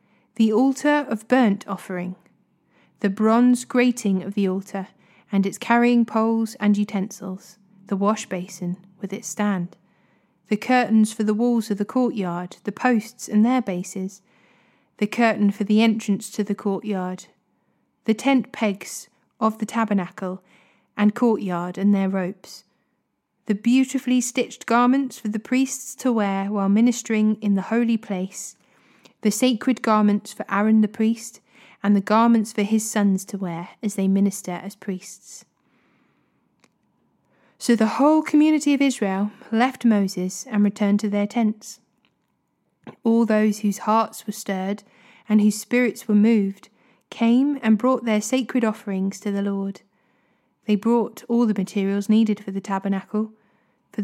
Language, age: English, 30-49